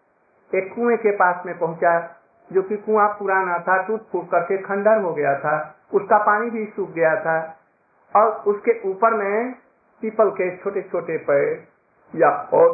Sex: male